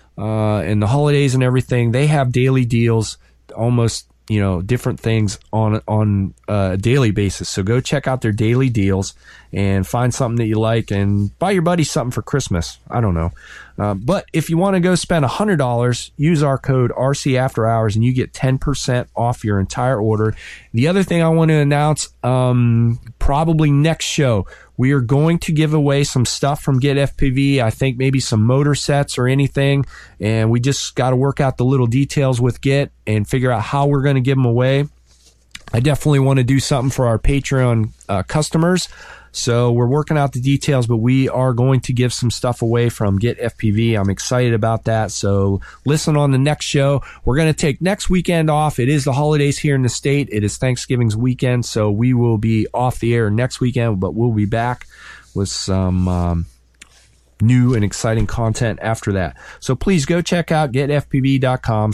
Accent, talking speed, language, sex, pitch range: American, 195 wpm, English, male, 110-140 Hz